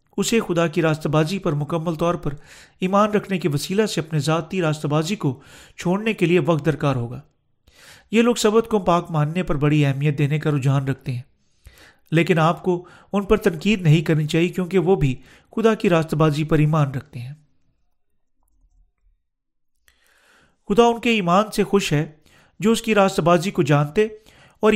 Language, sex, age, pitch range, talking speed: Urdu, male, 40-59, 150-200 Hz, 175 wpm